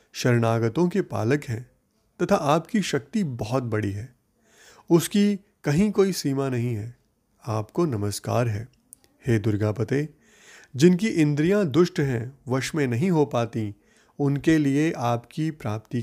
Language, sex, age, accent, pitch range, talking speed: Hindi, male, 30-49, native, 115-155 Hz, 125 wpm